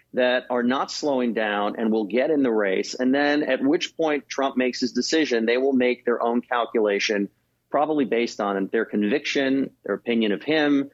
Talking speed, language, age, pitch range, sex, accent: 190 wpm, English, 30-49, 115-140 Hz, male, American